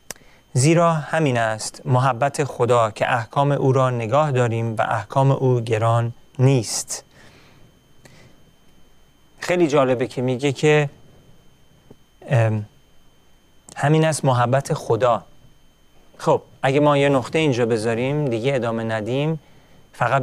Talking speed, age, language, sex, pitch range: 105 wpm, 40-59, Persian, male, 125-150 Hz